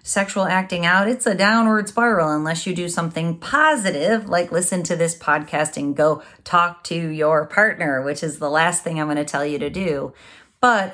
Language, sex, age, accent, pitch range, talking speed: English, female, 30-49, American, 155-200 Hz, 200 wpm